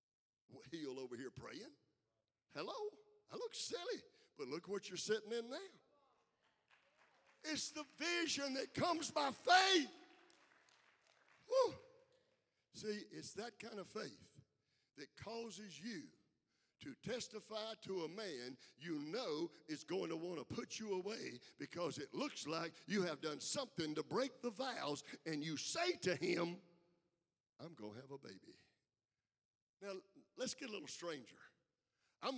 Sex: male